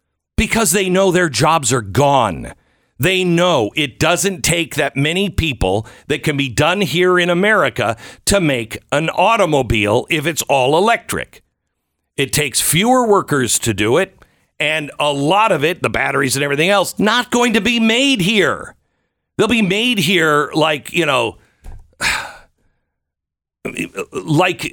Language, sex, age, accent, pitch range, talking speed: English, male, 50-69, American, 130-195 Hz, 150 wpm